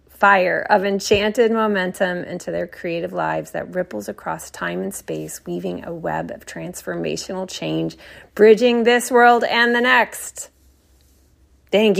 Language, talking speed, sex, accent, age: English, 135 wpm, female, American, 30-49